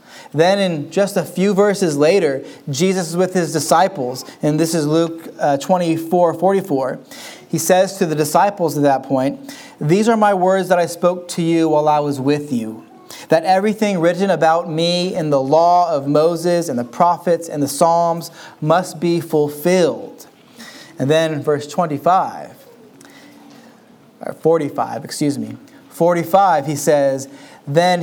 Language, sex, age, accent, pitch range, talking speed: English, male, 30-49, American, 155-185 Hz, 150 wpm